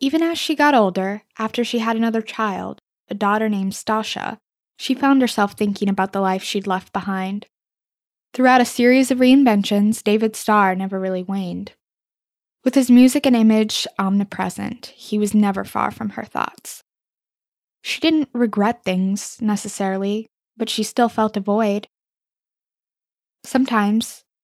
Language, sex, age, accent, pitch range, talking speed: English, female, 10-29, American, 195-235 Hz, 145 wpm